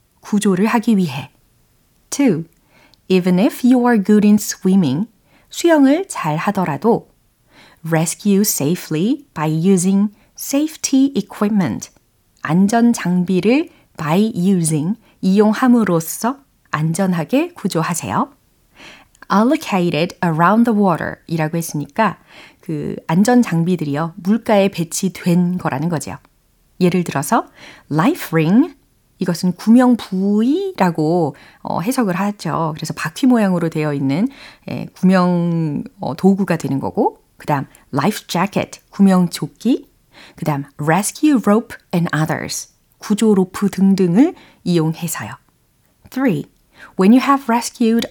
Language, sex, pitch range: Korean, female, 165-235 Hz